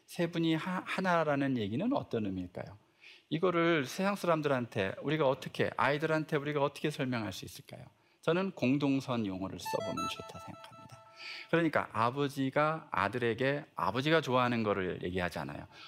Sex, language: male, Korean